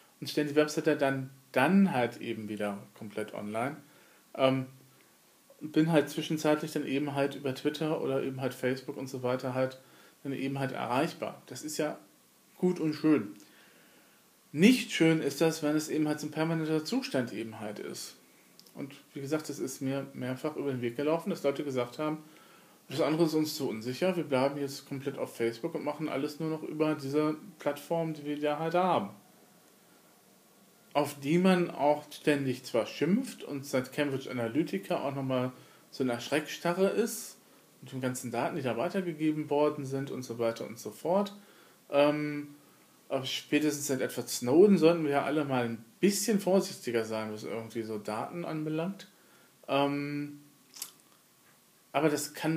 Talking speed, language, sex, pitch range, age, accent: 170 wpm, German, male, 130-160 Hz, 40-59, German